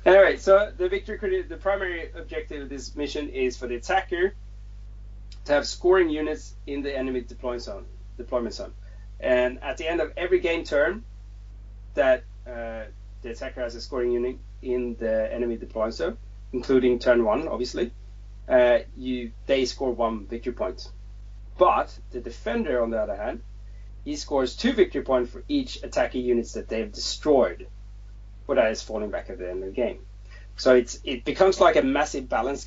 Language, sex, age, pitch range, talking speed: English, male, 30-49, 100-135 Hz, 180 wpm